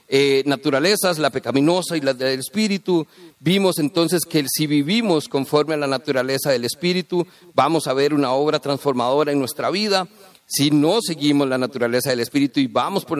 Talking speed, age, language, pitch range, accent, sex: 175 wpm, 50-69, Spanish, 130-190 Hz, Mexican, male